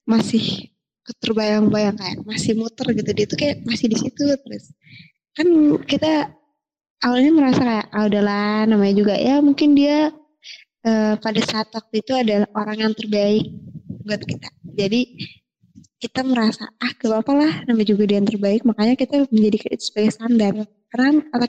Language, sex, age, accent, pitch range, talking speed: Indonesian, female, 20-39, native, 205-240 Hz, 140 wpm